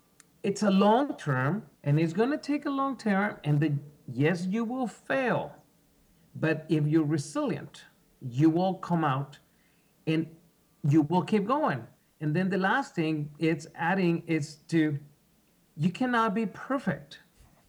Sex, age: male, 40-59